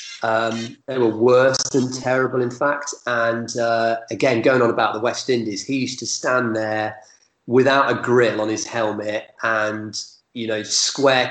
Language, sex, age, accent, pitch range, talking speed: English, male, 30-49, British, 110-125 Hz, 170 wpm